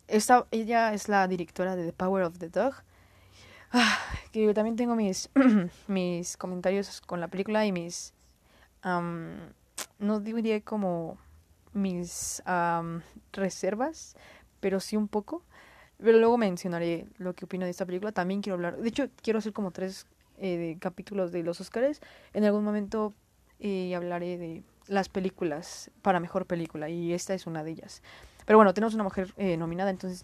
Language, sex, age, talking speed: Spanish, female, 20-39, 165 wpm